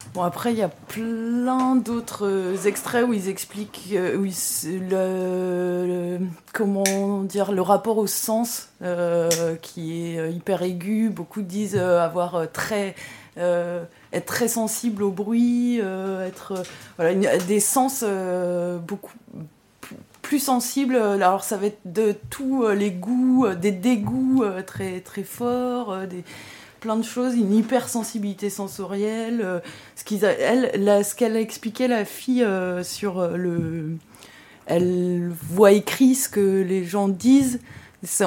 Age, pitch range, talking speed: 20-39, 185-225 Hz, 155 wpm